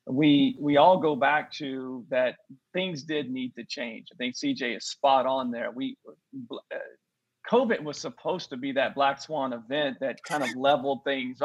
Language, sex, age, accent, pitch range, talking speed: English, male, 40-59, American, 140-200 Hz, 185 wpm